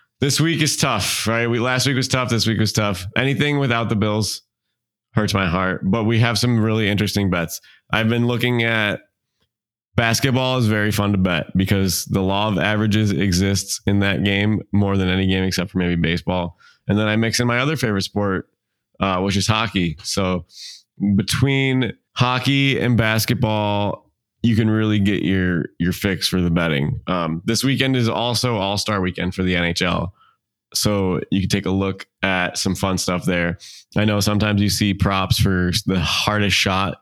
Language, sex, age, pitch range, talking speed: English, male, 20-39, 90-110 Hz, 185 wpm